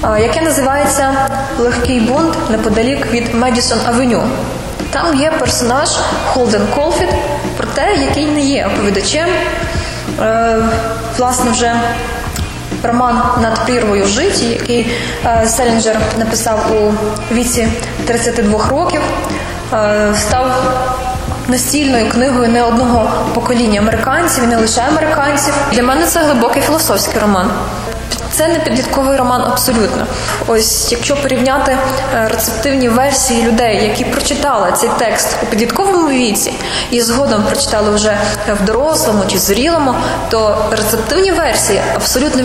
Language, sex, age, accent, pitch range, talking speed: Ukrainian, female, 20-39, native, 225-270 Hz, 110 wpm